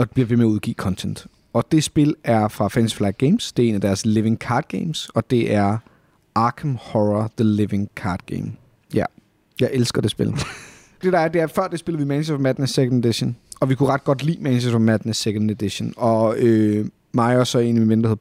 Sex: male